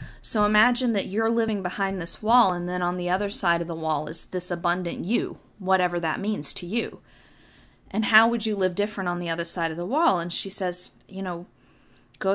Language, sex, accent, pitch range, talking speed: English, female, American, 175-220 Hz, 220 wpm